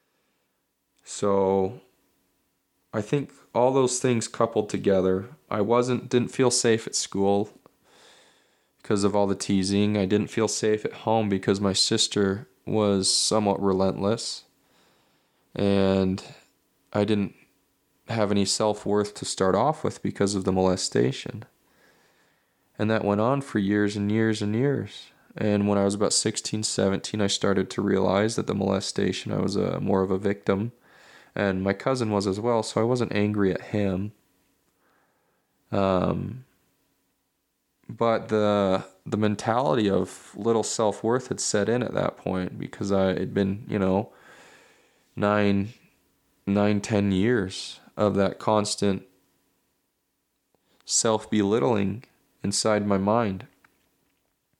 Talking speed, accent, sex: 135 wpm, American, male